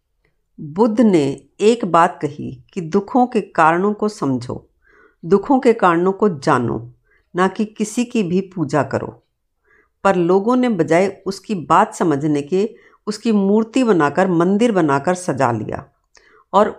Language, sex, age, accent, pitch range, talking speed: Hindi, female, 60-79, native, 145-205 Hz, 140 wpm